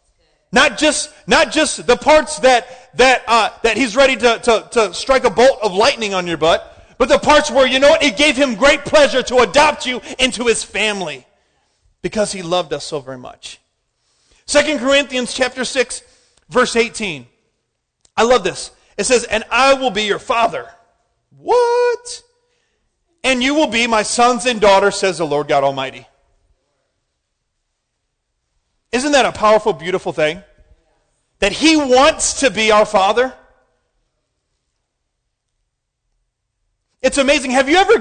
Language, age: English, 40-59